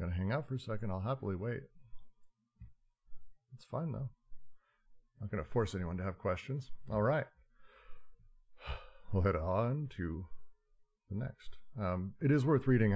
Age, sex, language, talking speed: 40-59, male, English, 150 wpm